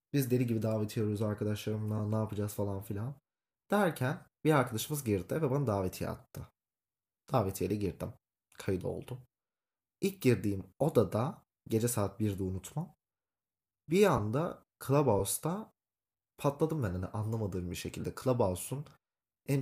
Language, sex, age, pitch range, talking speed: Turkish, male, 30-49, 105-135 Hz, 120 wpm